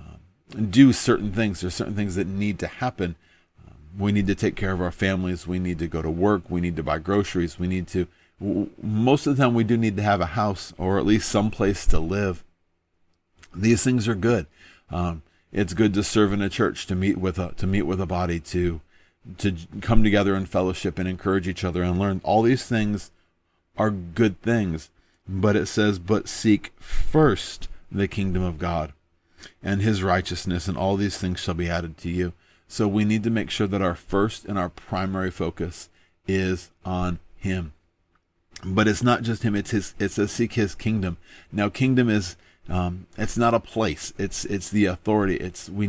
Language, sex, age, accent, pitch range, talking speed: English, male, 40-59, American, 90-105 Hz, 200 wpm